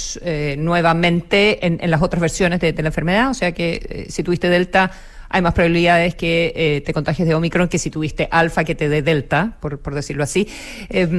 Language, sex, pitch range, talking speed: Spanish, female, 155-195 Hz, 220 wpm